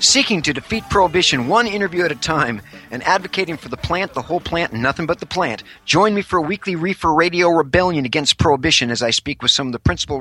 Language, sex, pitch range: English, male, 125-165 Hz